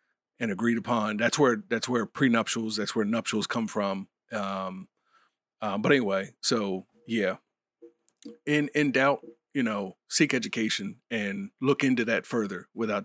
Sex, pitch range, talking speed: male, 100-125 Hz, 150 wpm